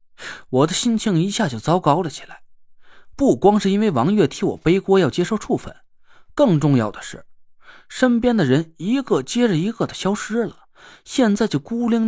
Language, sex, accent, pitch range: Chinese, male, native, 145-220 Hz